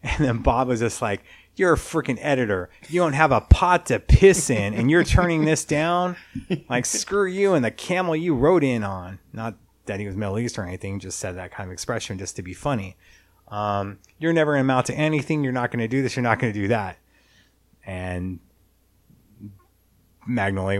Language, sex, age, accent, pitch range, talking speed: English, male, 30-49, American, 95-130 Hz, 210 wpm